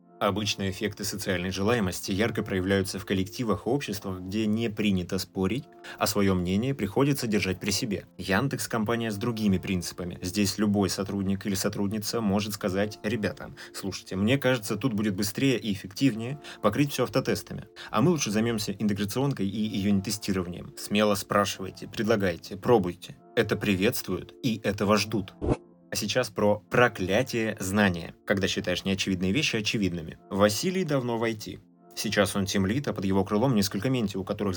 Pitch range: 95-115 Hz